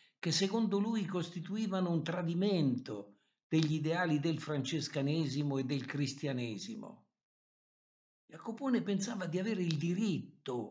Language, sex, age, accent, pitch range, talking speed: Italian, male, 60-79, native, 145-195 Hz, 105 wpm